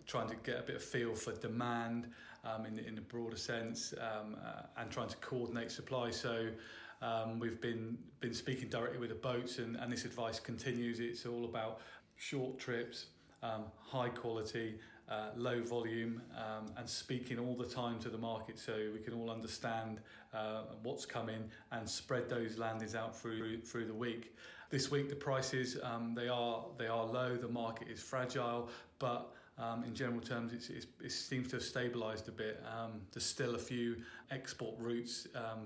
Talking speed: 185 wpm